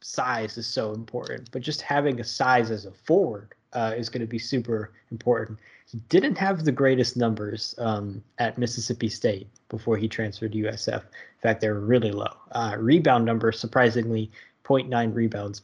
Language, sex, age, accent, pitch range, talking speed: English, male, 20-39, American, 110-125 Hz, 175 wpm